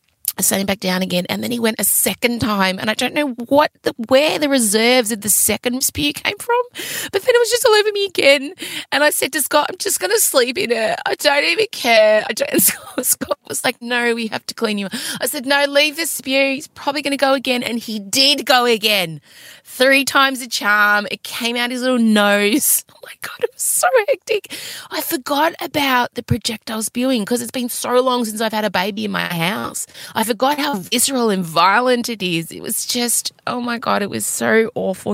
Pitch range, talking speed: 190-270 Hz, 235 wpm